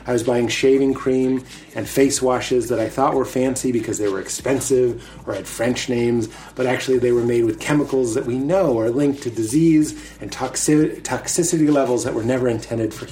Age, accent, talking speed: 30-49, American, 195 wpm